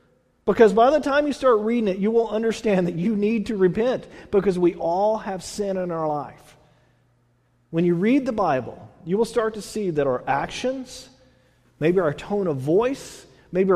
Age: 40-59